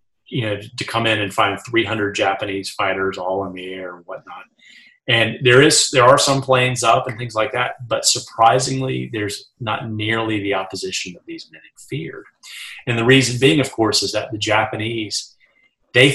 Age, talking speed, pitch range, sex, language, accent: 30-49, 190 wpm, 100-120 Hz, male, English, American